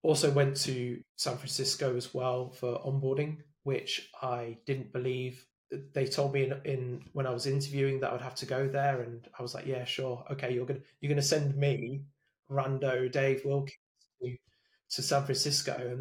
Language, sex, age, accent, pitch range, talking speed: English, male, 20-39, British, 125-135 Hz, 190 wpm